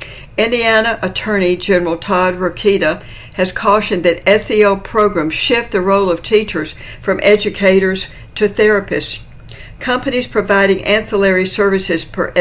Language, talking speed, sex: English, 115 wpm, female